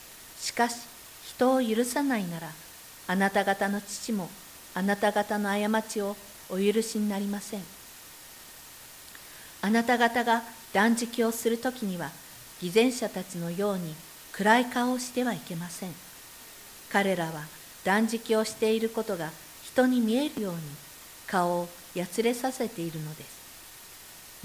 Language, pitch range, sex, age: Japanese, 175-230 Hz, female, 50-69